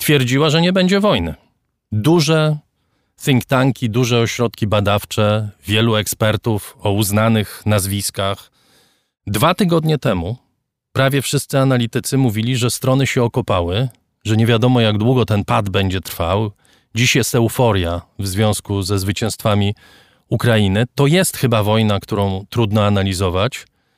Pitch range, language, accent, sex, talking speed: 105-135 Hz, Polish, native, male, 130 wpm